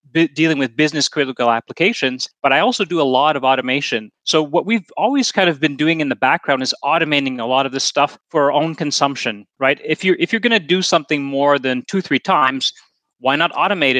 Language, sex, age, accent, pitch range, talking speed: English, male, 30-49, American, 135-170 Hz, 225 wpm